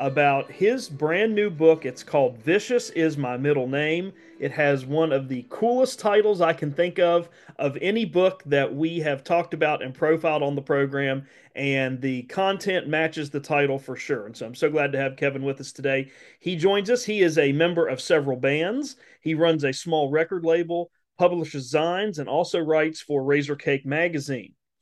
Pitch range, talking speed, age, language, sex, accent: 140-170 Hz, 195 wpm, 40-59, English, male, American